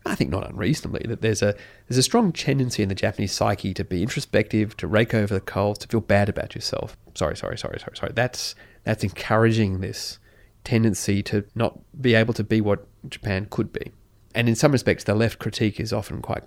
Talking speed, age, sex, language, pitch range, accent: 210 wpm, 30-49, male, English, 105-115 Hz, Australian